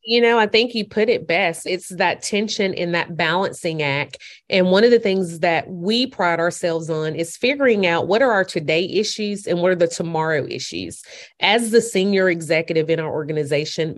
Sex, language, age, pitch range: female, English, 30-49, 170-225 Hz